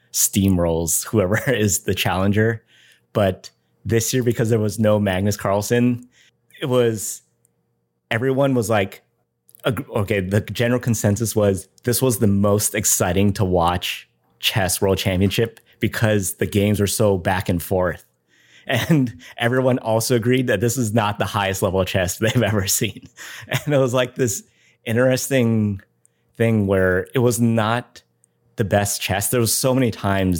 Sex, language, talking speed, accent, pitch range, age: male, English, 150 wpm, American, 95-115 Hz, 30-49